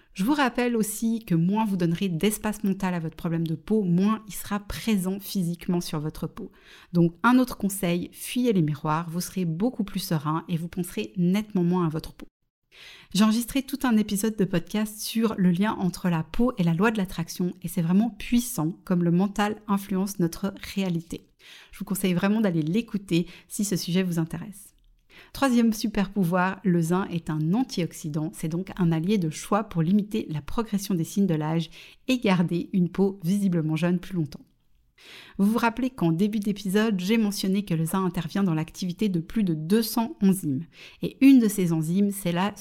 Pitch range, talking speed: 170-215 Hz, 195 wpm